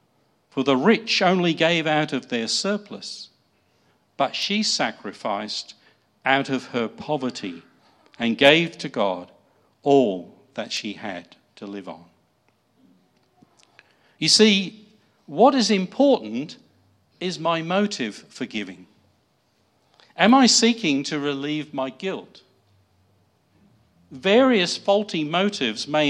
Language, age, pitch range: English, 50-69, 115-185 Hz